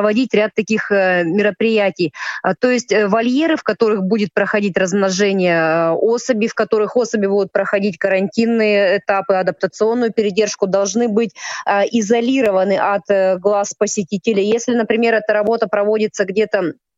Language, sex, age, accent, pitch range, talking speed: Russian, female, 20-39, native, 195-230 Hz, 115 wpm